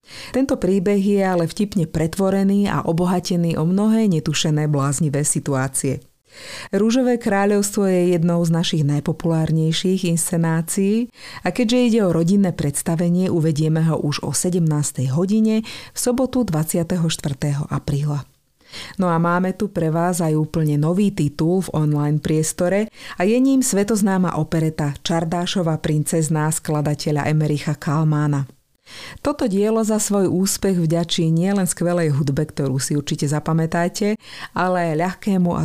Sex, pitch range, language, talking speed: female, 150-195 Hz, Slovak, 130 wpm